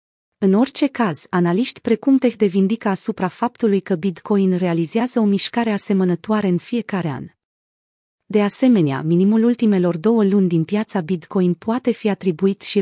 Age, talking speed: 30-49, 145 wpm